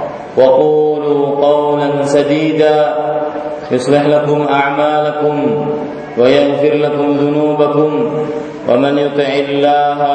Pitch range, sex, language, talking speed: 145-150 Hz, male, Malay, 70 wpm